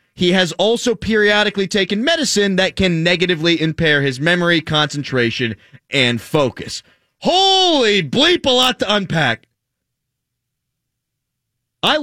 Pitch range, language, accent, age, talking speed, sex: 135-205 Hz, English, American, 30-49, 110 wpm, male